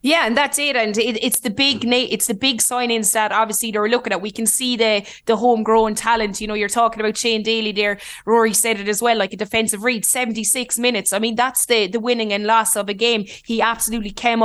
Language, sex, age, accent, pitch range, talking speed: English, female, 20-39, Irish, 215-235 Hz, 235 wpm